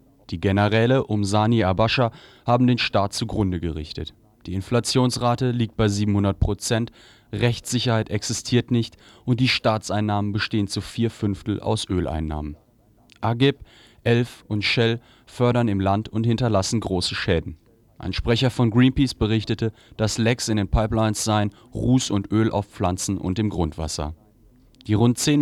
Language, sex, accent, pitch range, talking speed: German, male, German, 100-120 Hz, 145 wpm